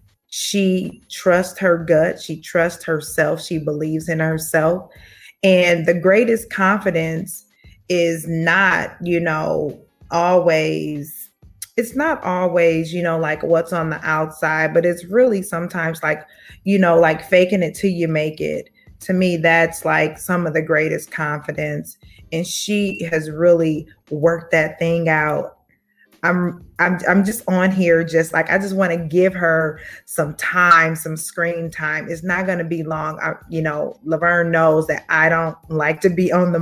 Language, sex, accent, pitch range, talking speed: English, female, American, 160-190 Hz, 160 wpm